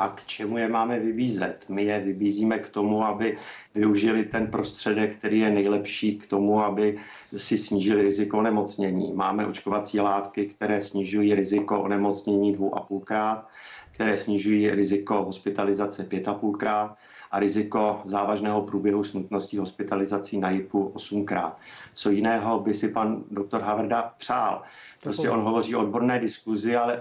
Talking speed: 135 wpm